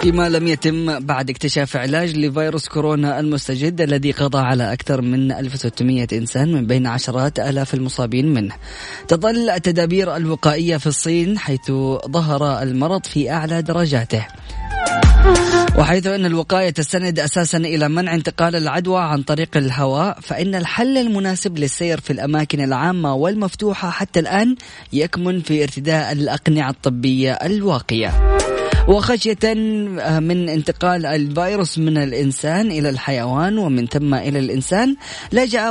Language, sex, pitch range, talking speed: Arabic, female, 140-185 Hz, 125 wpm